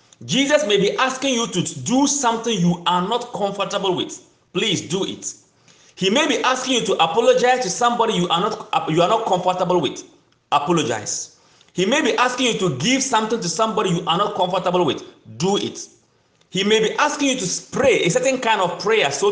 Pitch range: 185-265 Hz